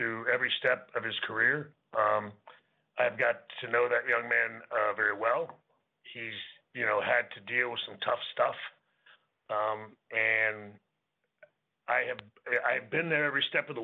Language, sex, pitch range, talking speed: English, male, 120-175 Hz, 160 wpm